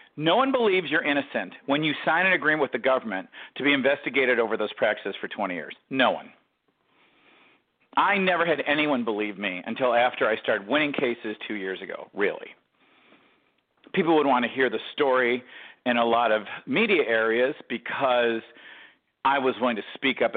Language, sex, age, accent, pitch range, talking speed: English, male, 40-59, American, 120-180 Hz, 175 wpm